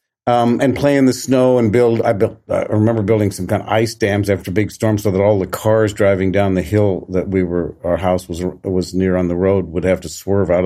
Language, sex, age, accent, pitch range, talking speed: English, male, 50-69, American, 95-120 Hz, 265 wpm